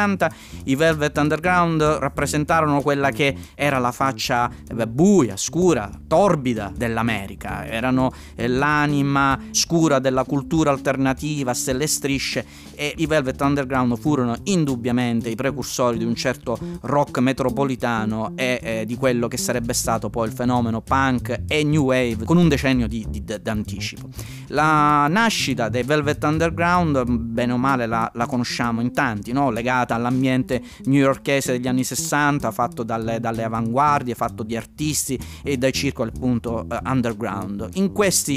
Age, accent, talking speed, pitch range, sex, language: 30-49, native, 135 wpm, 115-145 Hz, male, Italian